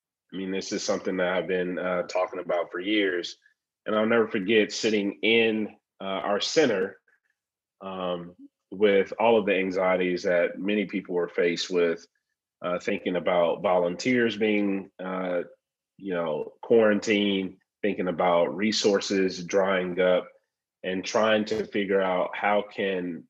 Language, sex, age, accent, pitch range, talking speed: English, male, 30-49, American, 90-105 Hz, 140 wpm